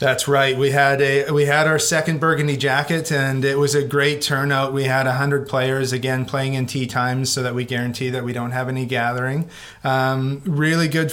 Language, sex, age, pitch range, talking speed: English, male, 30-49, 130-145 Hz, 215 wpm